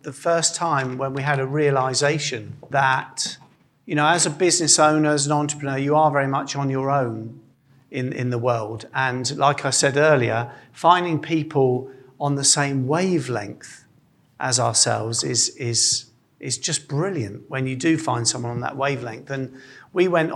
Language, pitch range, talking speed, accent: English, 125-150 Hz, 170 wpm, British